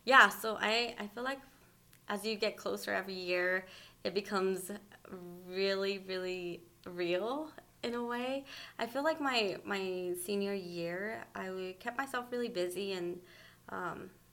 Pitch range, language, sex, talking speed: 180-205 Hz, English, female, 140 wpm